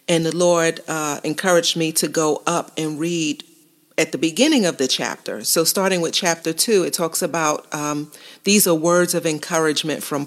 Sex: female